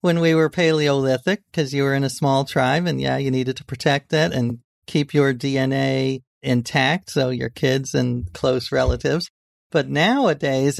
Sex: male